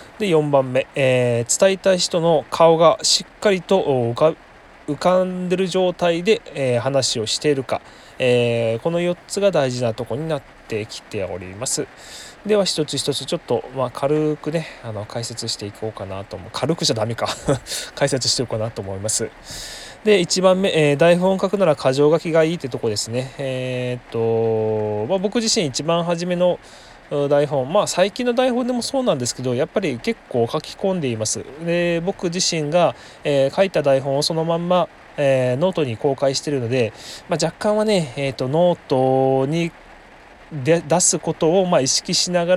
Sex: male